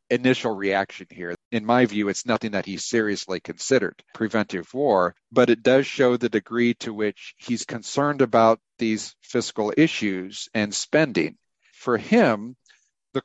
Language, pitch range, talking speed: English, 100-120 Hz, 150 wpm